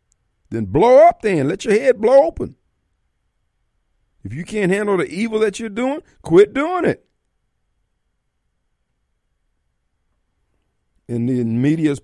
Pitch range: 110-155 Hz